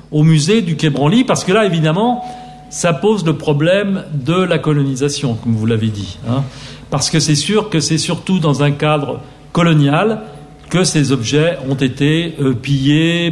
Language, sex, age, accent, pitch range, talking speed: Italian, male, 50-69, French, 135-165 Hz, 170 wpm